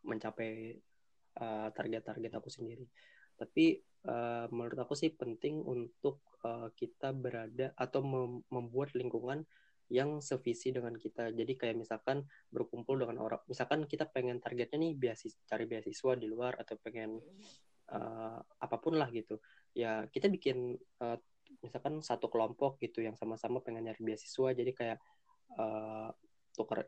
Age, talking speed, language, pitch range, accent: 20-39, 140 wpm, Indonesian, 115-140 Hz, native